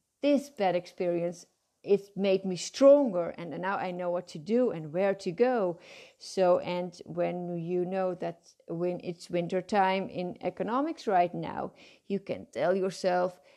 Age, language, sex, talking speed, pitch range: 30-49, English, female, 160 wpm, 175-205 Hz